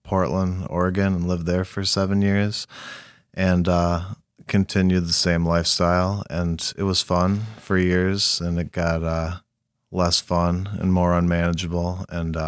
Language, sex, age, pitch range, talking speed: English, male, 30-49, 85-95 Hz, 145 wpm